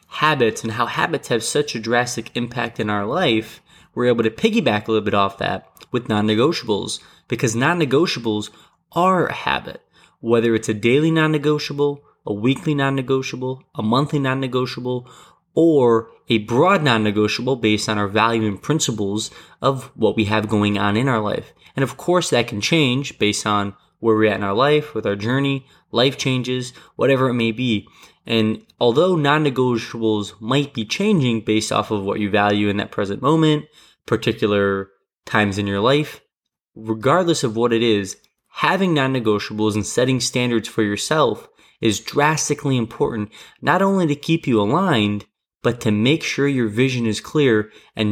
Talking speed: 165 wpm